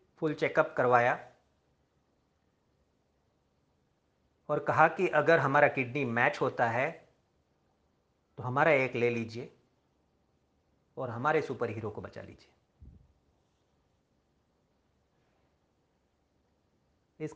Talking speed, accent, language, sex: 85 wpm, native, Hindi, male